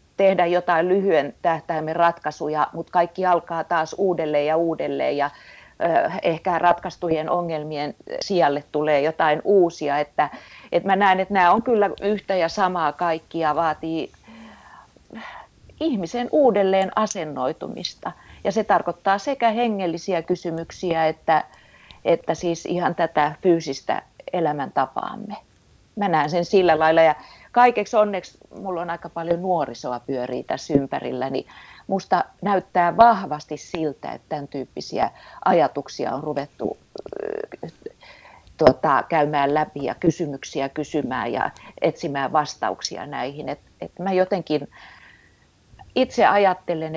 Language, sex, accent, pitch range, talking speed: Finnish, female, native, 155-190 Hz, 120 wpm